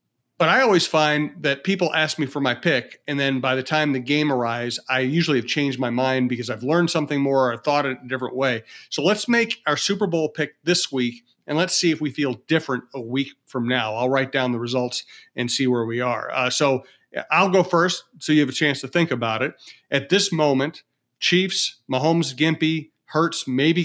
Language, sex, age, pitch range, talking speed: English, male, 40-59, 125-150 Hz, 220 wpm